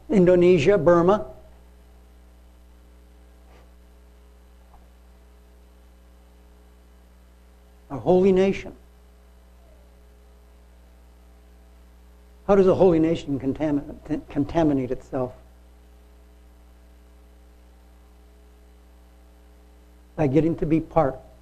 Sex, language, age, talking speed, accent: male, English, 60-79, 50 wpm, American